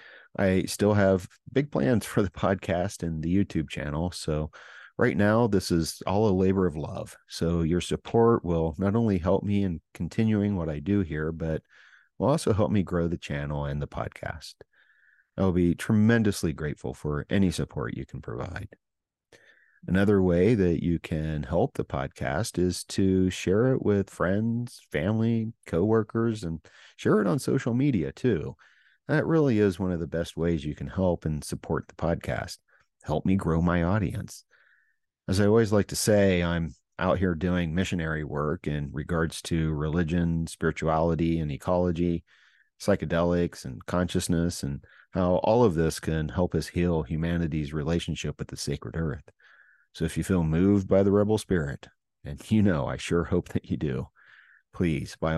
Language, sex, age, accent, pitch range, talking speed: English, male, 40-59, American, 80-100 Hz, 170 wpm